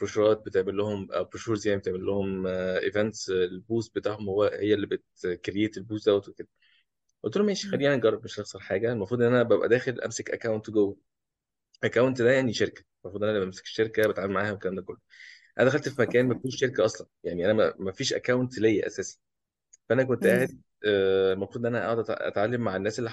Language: Arabic